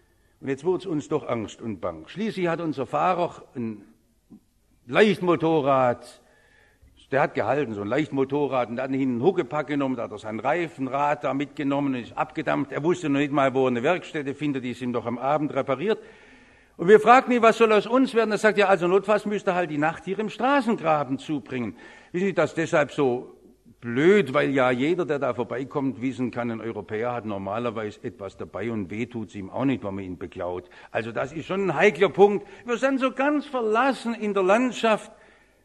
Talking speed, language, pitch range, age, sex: 205 wpm, English, 130-195 Hz, 60-79, male